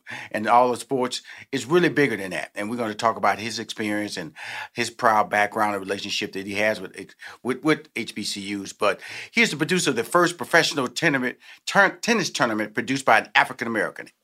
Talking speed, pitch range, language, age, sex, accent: 200 wpm, 115-140 Hz, English, 40-59, male, American